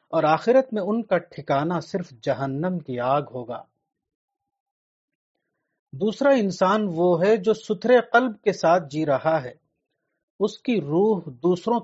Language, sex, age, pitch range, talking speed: Urdu, male, 40-59, 155-205 Hz, 135 wpm